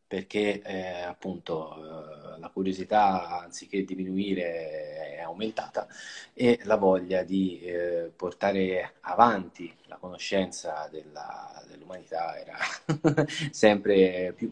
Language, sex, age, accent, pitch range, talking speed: Italian, male, 30-49, native, 95-140 Hz, 100 wpm